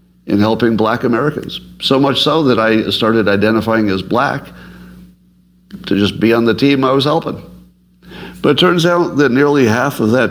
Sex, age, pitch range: male, 60-79, 80-125 Hz